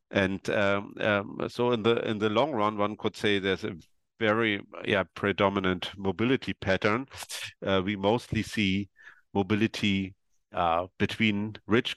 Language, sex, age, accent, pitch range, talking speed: English, male, 50-69, German, 90-105 Hz, 140 wpm